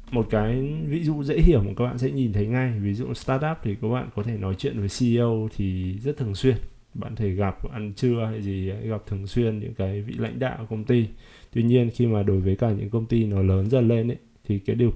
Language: Vietnamese